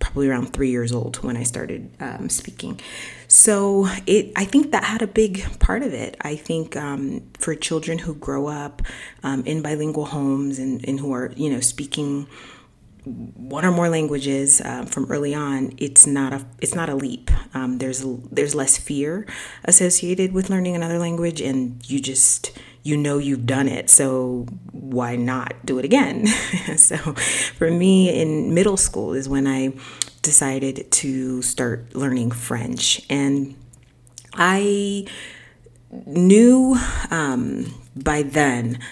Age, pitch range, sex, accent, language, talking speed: 30-49, 130-160 Hz, female, American, English, 155 wpm